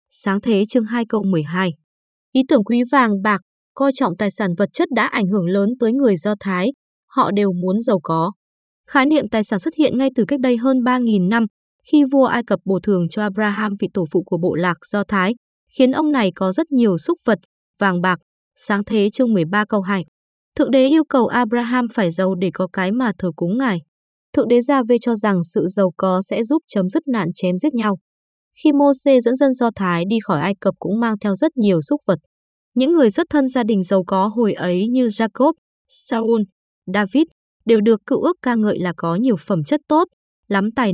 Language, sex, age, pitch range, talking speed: Vietnamese, female, 20-39, 190-250 Hz, 225 wpm